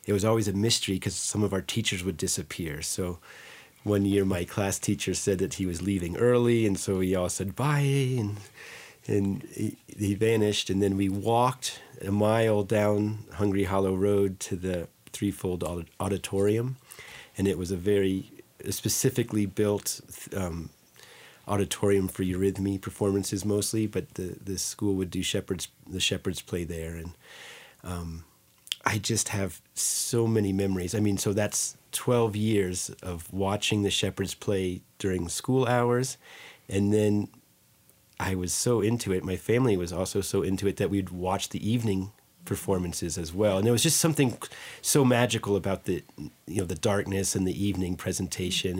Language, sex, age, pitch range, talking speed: English, male, 30-49, 95-105 Hz, 165 wpm